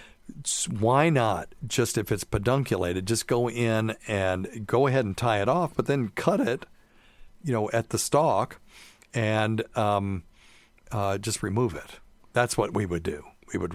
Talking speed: 165 wpm